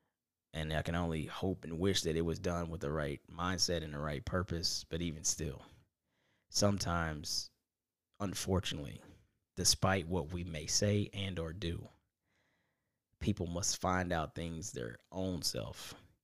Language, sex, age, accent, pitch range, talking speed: English, male, 10-29, American, 85-100 Hz, 150 wpm